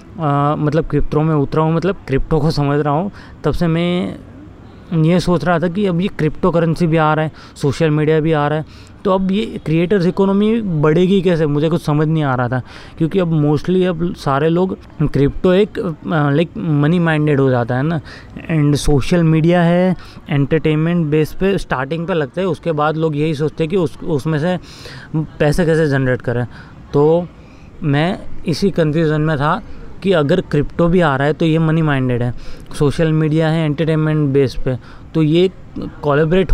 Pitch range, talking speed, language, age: 140-165 Hz, 190 wpm, Hindi, 20-39